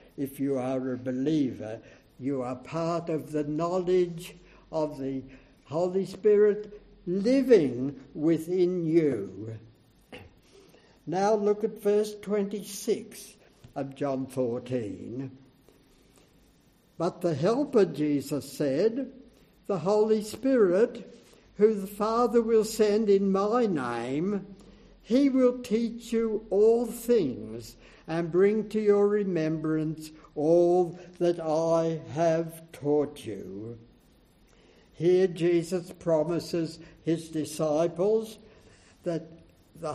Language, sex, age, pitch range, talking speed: English, male, 60-79, 150-215 Hz, 100 wpm